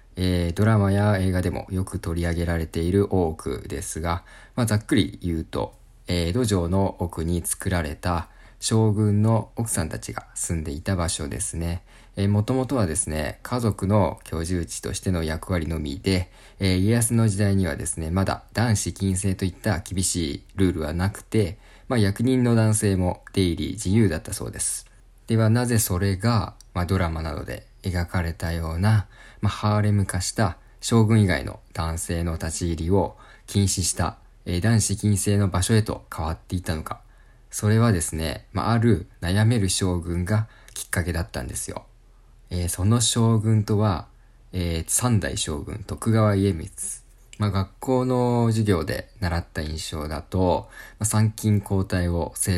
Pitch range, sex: 85-110 Hz, male